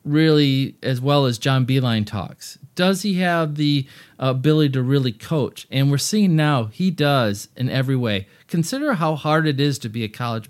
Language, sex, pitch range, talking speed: English, male, 125-155 Hz, 195 wpm